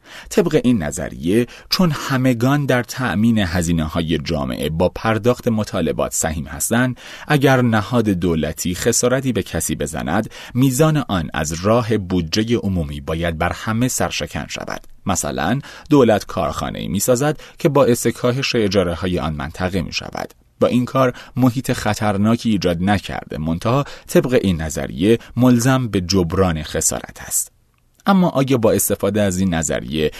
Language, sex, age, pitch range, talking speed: Persian, male, 30-49, 85-125 Hz, 140 wpm